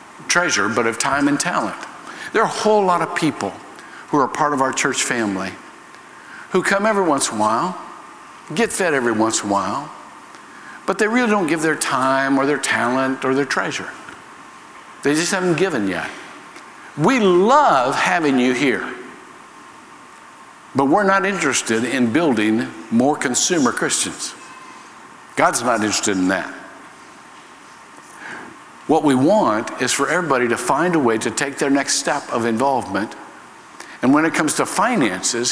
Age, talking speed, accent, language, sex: 60-79, 160 wpm, American, English, male